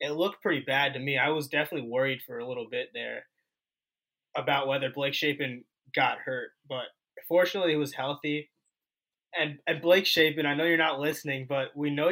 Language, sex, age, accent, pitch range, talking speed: English, male, 20-39, American, 130-160 Hz, 190 wpm